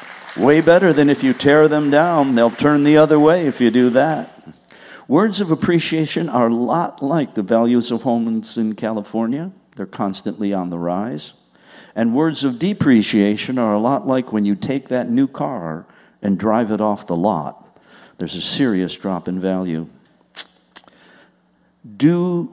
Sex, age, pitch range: male, 50-69, 105-140 Hz